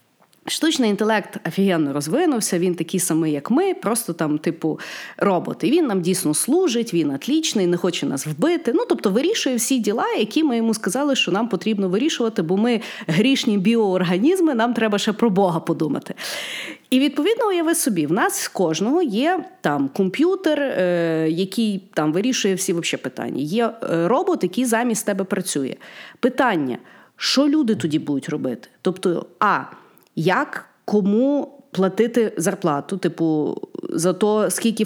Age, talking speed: 30-49, 145 wpm